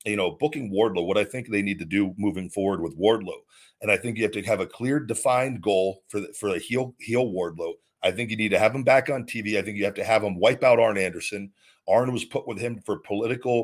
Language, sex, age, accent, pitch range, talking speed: English, male, 40-59, American, 100-125 Hz, 275 wpm